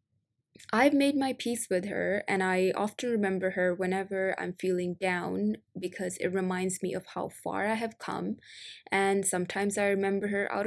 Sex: female